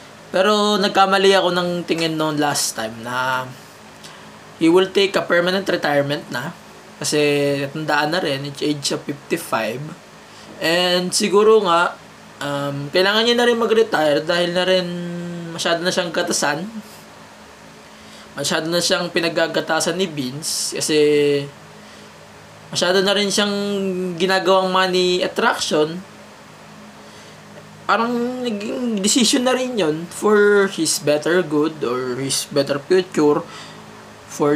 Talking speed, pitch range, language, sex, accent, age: 120 wpm, 150-195 Hz, English, male, Filipino, 20-39